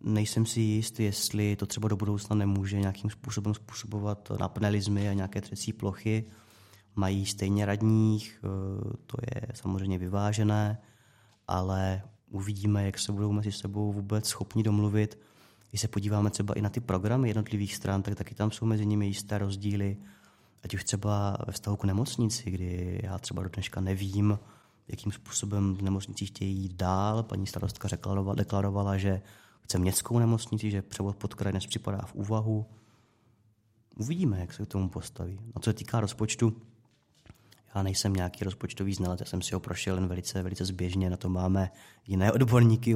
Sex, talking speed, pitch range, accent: male, 160 wpm, 95-110 Hz, native